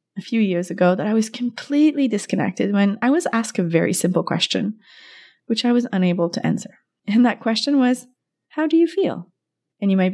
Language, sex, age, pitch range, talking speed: English, female, 30-49, 175-250 Hz, 200 wpm